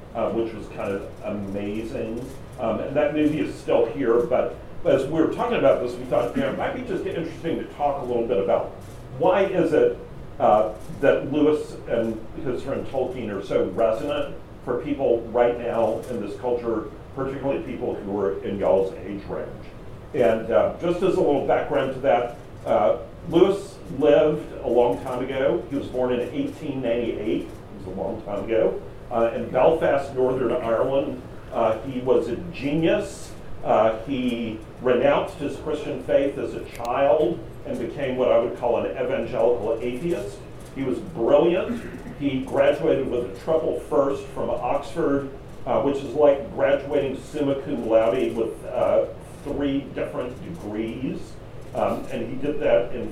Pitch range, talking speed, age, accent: 115-145 Hz, 165 wpm, 50-69, American